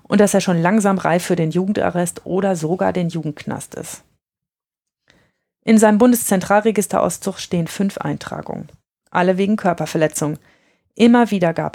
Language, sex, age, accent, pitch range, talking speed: German, female, 30-49, German, 170-205 Hz, 135 wpm